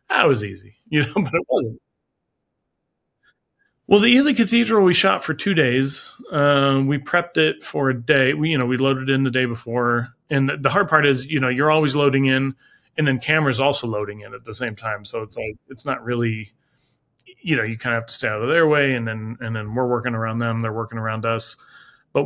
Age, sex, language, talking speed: 30-49, male, English, 230 wpm